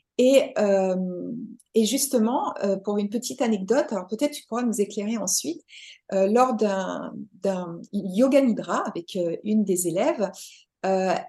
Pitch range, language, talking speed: 195-250 Hz, French, 150 wpm